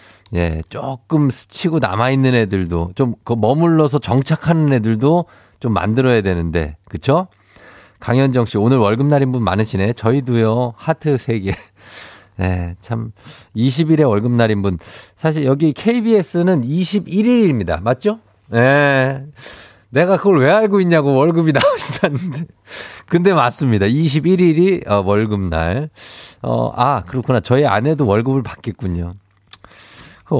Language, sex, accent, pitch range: Korean, male, native, 105-150 Hz